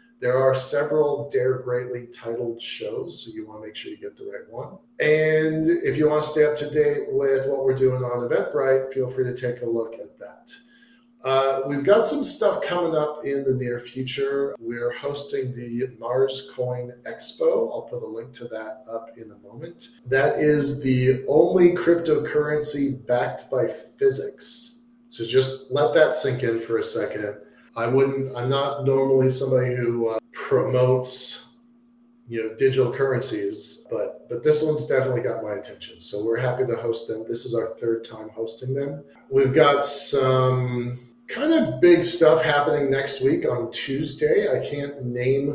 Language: English